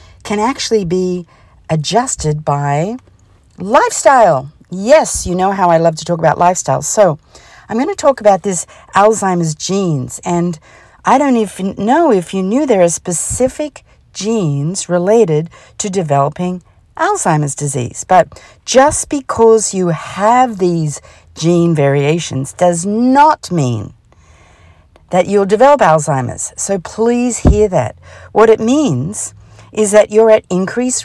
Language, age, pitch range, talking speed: English, 50-69, 150-210 Hz, 135 wpm